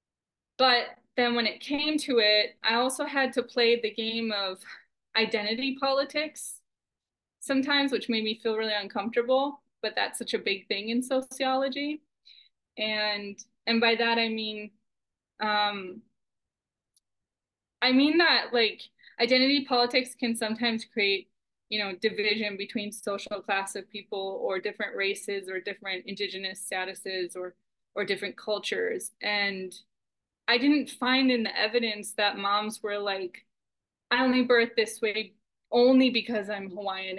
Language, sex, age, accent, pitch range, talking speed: English, female, 20-39, American, 205-240 Hz, 140 wpm